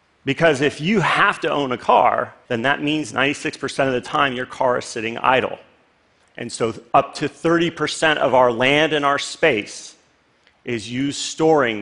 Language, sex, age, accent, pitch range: Chinese, male, 40-59, American, 115-155 Hz